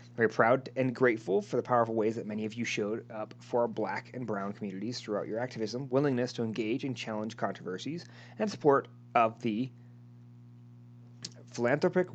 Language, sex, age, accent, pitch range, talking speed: English, male, 30-49, American, 110-135 Hz, 170 wpm